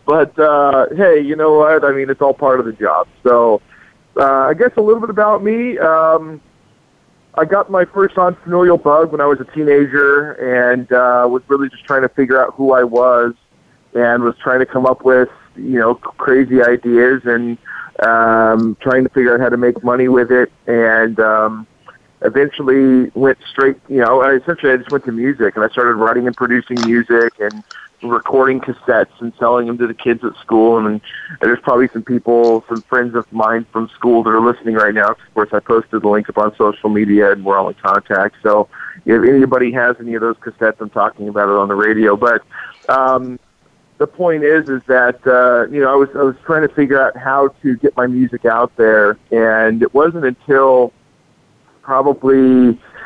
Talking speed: 200 wpm